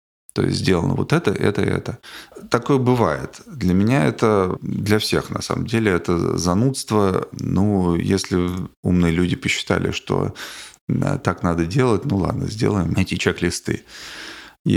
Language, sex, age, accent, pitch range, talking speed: Russian, male, 20-39, native, 90-110 Hz, 140 wpm